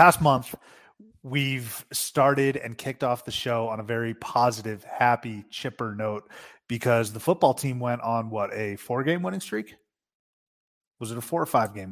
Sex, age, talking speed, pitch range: male, 30-49, 165 wpm, 115-150 Hz